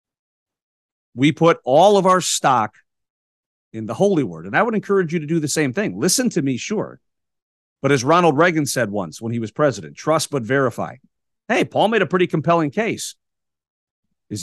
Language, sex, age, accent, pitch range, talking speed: English, male, 50-69, American, 130-185 Hz, 185 wpm